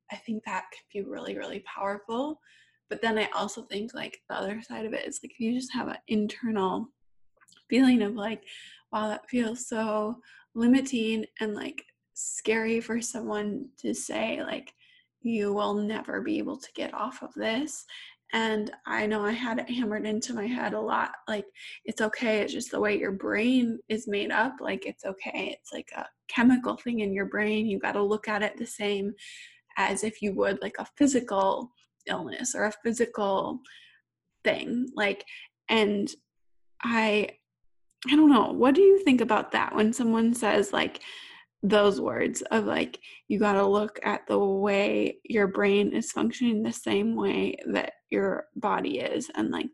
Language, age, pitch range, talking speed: English, 20-39, 210-255 Hz, 175 wpm